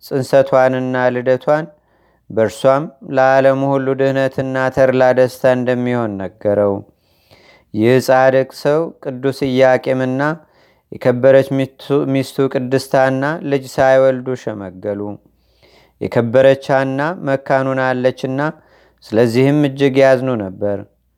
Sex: male